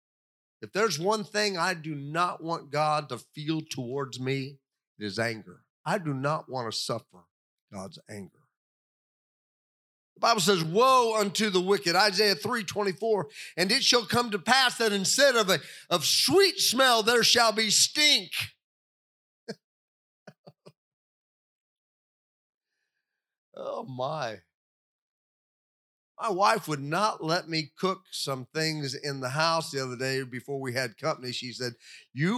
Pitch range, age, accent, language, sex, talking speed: 160-235 Hz, 40-59, American, English, male, 140 wpm